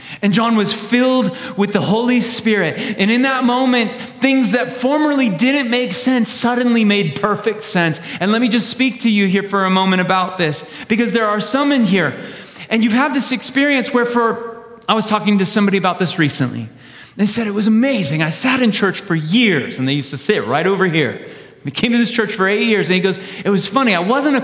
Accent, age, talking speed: American, 30-49, 225 wpm